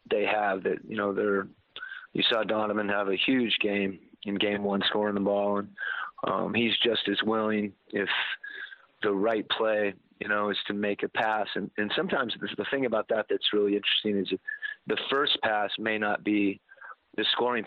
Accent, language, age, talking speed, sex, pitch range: American, English, 40-59, 185 wpm, male, 100-110 Hz